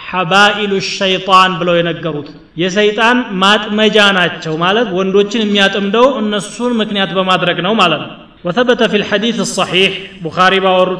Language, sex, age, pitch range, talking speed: Amharic, male, 30-49, 180-205 Hz, 100 wpm